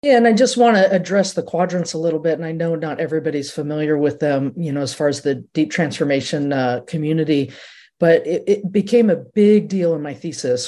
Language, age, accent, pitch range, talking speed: English, 50-69, American, 140-165 Hz, 225 wpm